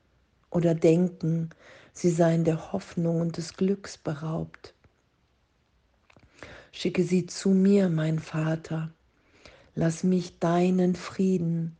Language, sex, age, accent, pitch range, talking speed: German, female, 50-69, German, 135-170 Hz, 100 wpm